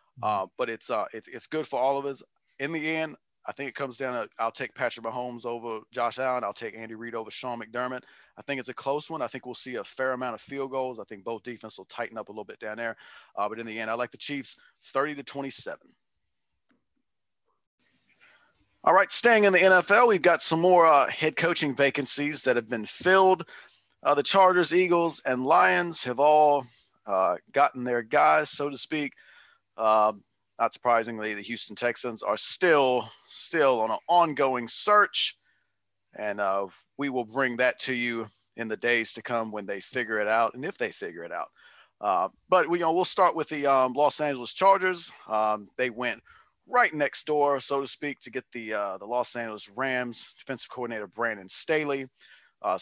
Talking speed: 200 wpm